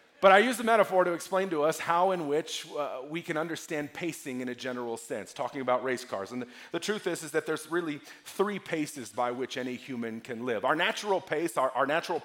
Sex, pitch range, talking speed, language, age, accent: male, 140-185 Hz, 235 wpm, English, 40-59, American